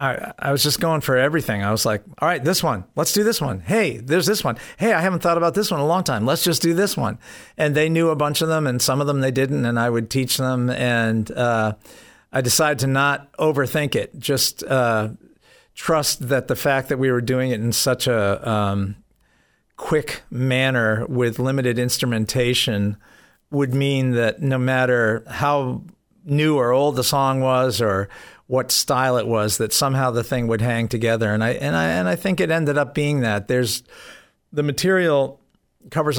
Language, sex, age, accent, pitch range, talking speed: English, male, 50-69, American, 115-145 Hz, 205 wpm